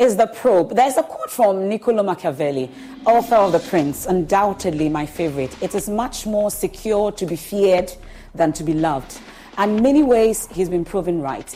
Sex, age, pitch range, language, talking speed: female, 40-59, 165-215 Hz, English, 180 wpm